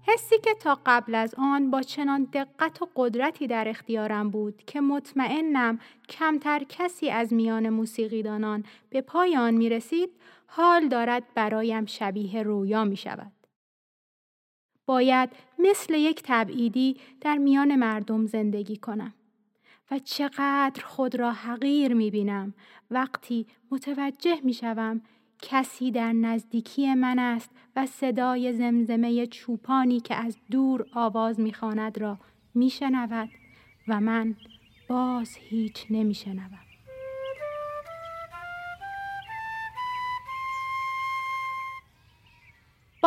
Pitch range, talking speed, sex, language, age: 225-285 Hz, 105 wpm, female, Persian, 30-49